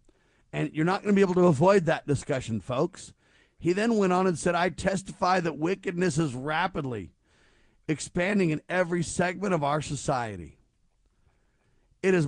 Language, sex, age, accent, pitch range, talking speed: English, male, 50-69, American, 145-190 Hz, 160 wpm